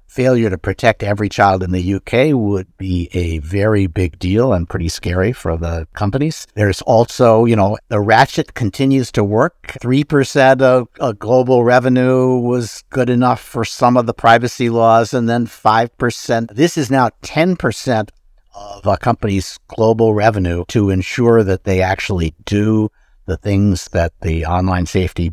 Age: 60-79